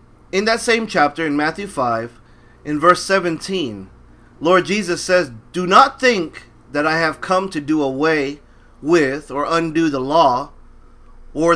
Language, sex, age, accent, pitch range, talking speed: English, male, 40-59, American, 135-205 Hz, 150 wpm